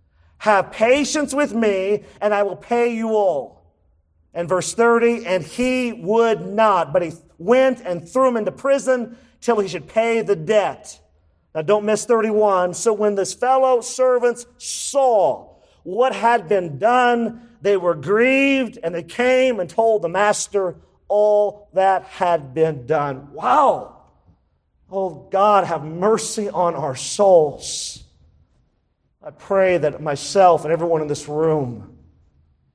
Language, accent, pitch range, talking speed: English, American, 125-210 Hz, 140 wpm